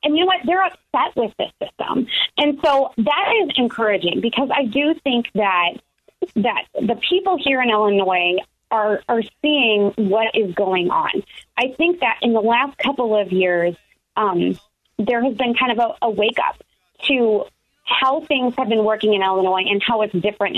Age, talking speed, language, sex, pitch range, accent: 30-49, 185 wpm, English, female, 210-285 Hz, American